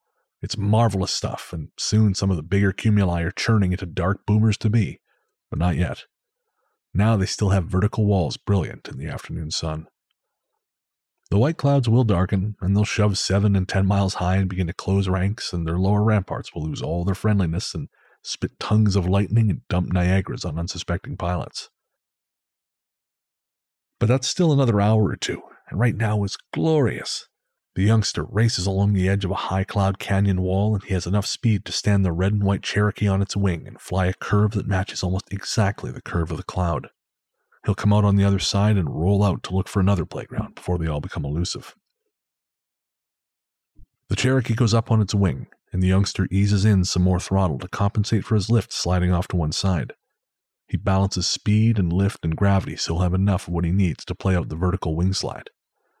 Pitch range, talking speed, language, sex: 90-105 Hz, 200 wpm, English, male